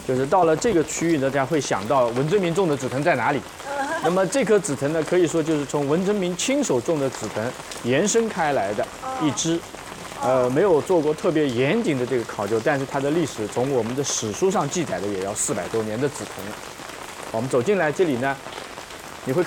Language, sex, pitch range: Chinese, male, 135-195 Hz